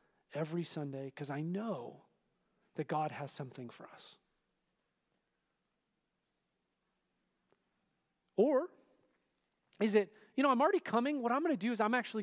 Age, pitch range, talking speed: 40-59, 170-245 Hz, 130 wpm